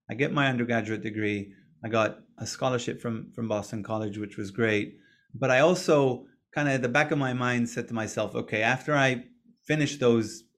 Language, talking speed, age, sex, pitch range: English, 200 wpm, 30-49, male, 115-140 Hz